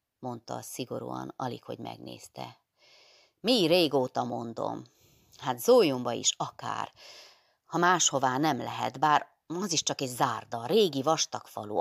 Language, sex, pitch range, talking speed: Hungarian, female, 125-170 Hz, 120 wpm